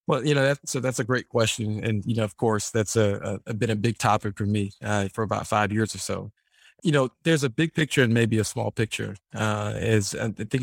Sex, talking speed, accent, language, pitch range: male, 255 wpm, American, English, 110-125 Hz